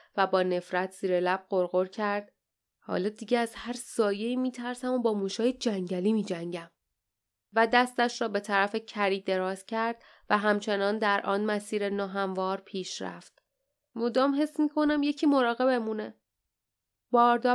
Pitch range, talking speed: 190-240 Hz, 145 wpm